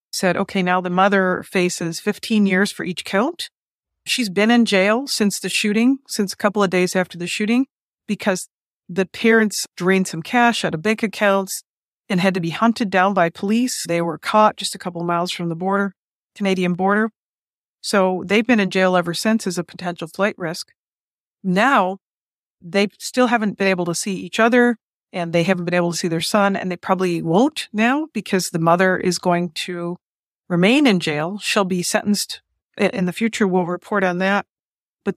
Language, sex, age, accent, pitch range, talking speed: English, female, 40-59, American, 180-210 Hz, 195 wpm